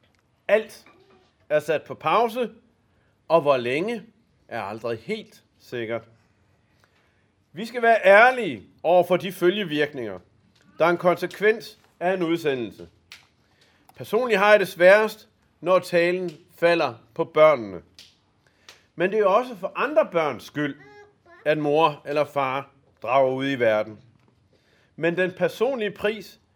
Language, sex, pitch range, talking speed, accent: Danish, male, 140-200 Hz, 130 wpm, native